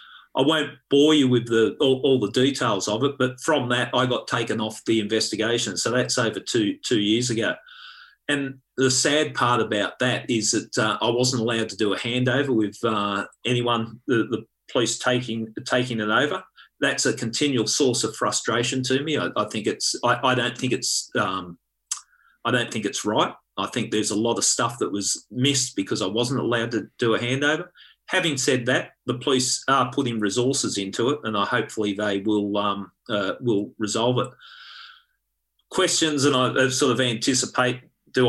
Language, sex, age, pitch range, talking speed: English, male, 40-59, 110-135 Hz, 190 wpm